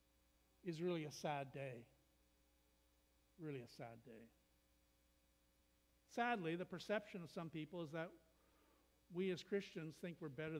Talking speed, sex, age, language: 130 wpm, male, 60-79, English